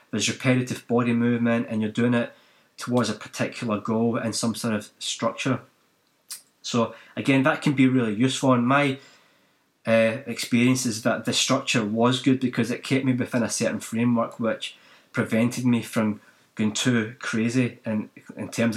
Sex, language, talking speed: male, English, 165 wpm